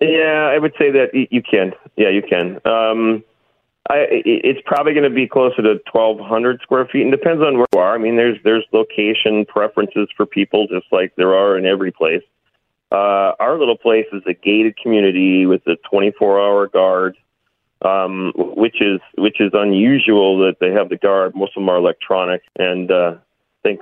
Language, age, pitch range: English, 30-49, 95-120 Hz